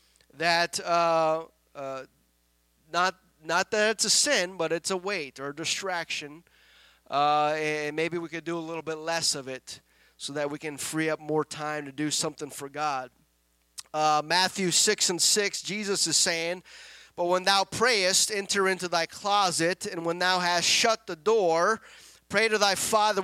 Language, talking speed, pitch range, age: English, 175 wpm, 155-195 Hz, 30-49